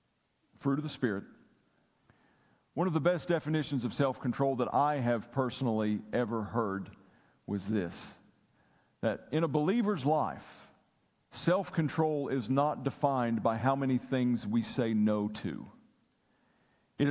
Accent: American